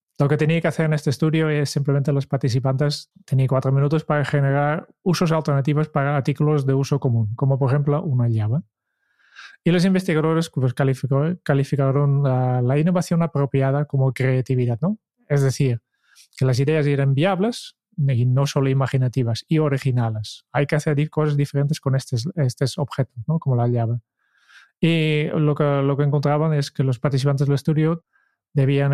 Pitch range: 135-160 Hz